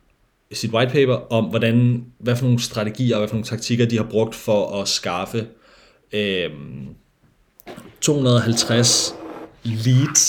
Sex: male